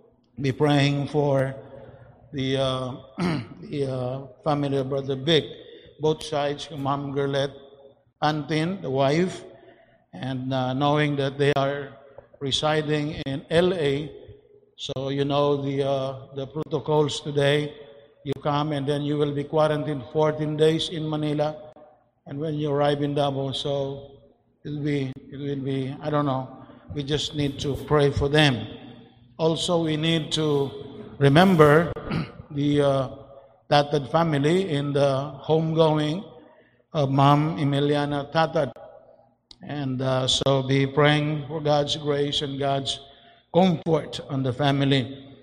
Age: 50-69